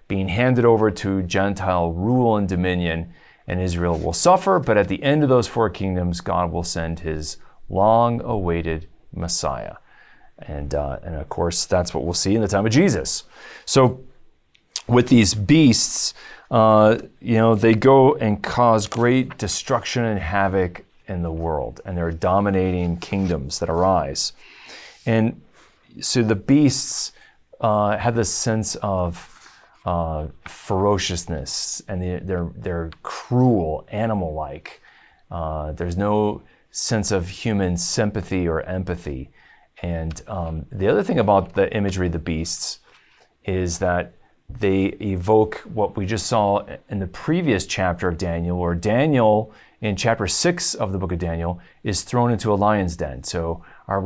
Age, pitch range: 30-49, 85-110 Hz